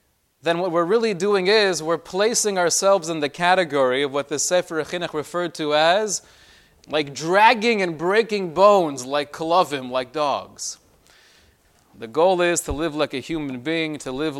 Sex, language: male, English